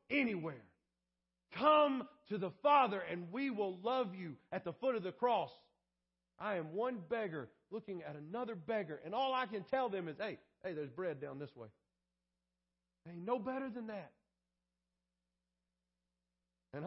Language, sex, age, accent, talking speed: English, male, 40-59, American, 155 wpm